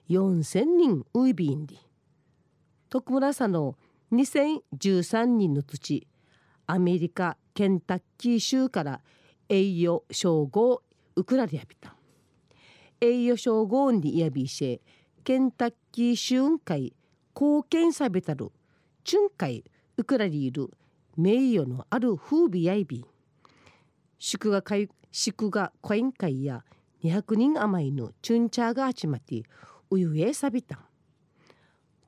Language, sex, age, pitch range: Japanese, female, 40-59, 150-235 Hz